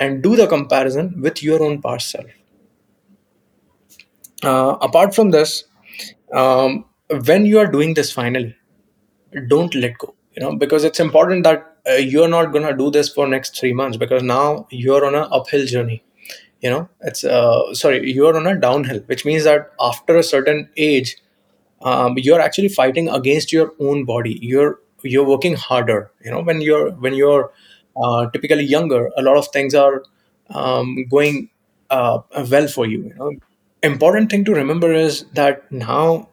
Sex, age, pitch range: male, 20-39, 130-155 Hz